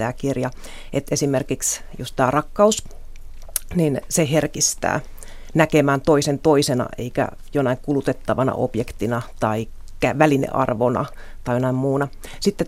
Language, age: Finnish, 30-49